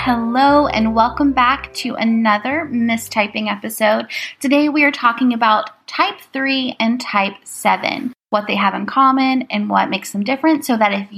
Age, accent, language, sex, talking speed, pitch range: 20-39, American, English, female, 165 wpm, 210-275 Hz